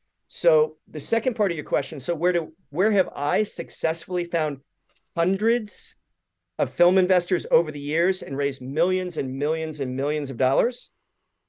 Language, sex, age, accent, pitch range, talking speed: English, male, 40-59, American, 135-180 Hz, 160 wpm